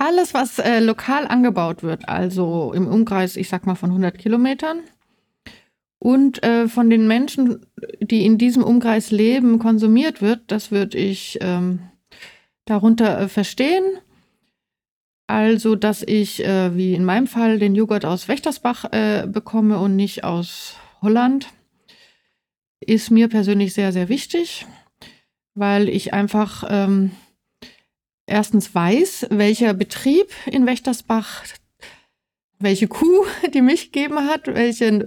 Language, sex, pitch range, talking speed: German, female, 195-245 Hz, 125 wpm